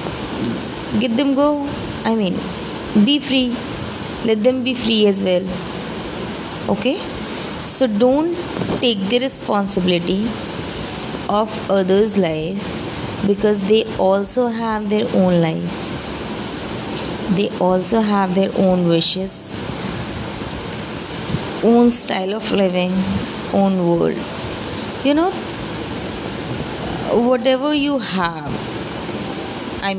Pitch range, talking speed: 180-230 Hz, 95 wpm